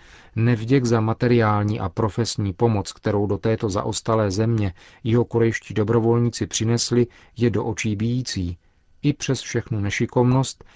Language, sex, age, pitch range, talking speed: Czech, male, 40-59, 100-120 Hz, 130 wpm